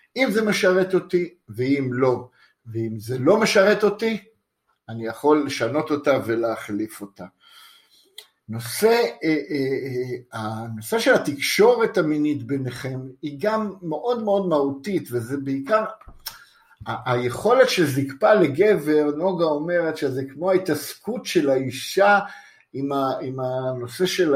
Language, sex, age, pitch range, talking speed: Hebrew, male, 50-69, 130-190 Hz, 110 wpm